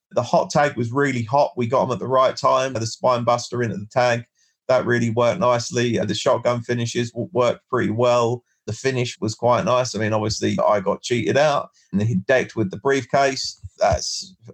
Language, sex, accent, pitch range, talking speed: English, male, British, 115-140 Hz, 200 wpm